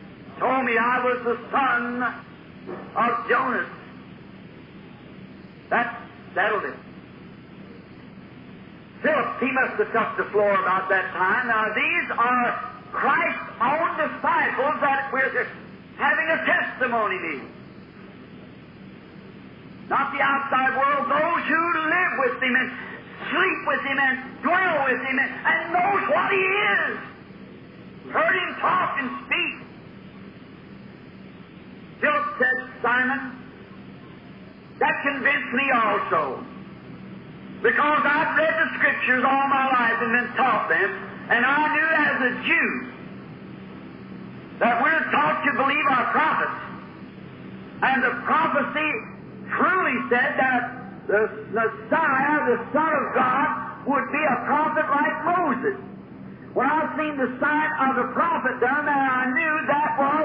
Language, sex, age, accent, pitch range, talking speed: English, male, 50-69, American, 250-305 Hz, 125 wpm